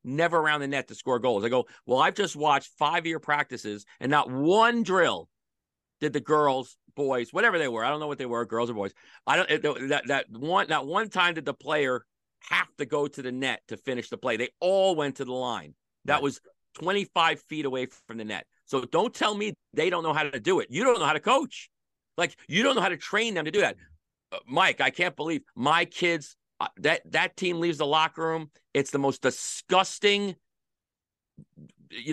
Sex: male